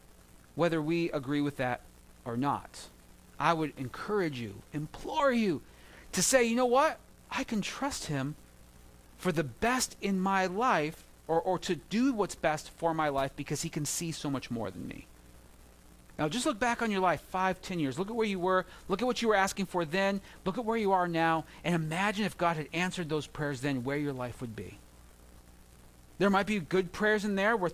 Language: English